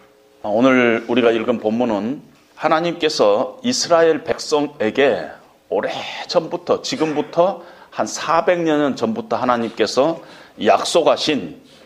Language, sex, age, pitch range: Korean, male, 40-59, 115-165 Hz